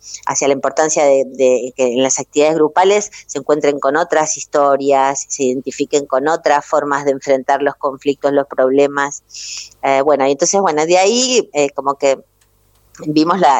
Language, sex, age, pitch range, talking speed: Spanish, female, 30-49, 135-160 Hz, 170 wpm